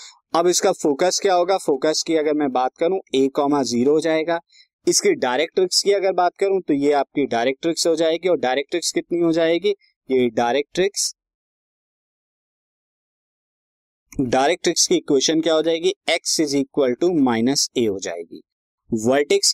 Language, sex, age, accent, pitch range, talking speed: Hindi, male, 20-39, native, 140-185 Hz, 150 wpm